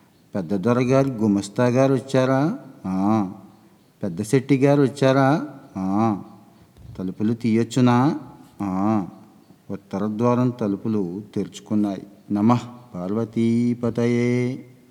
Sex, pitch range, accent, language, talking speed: male, 100-120 Hz, native, Telugu, 55 wpm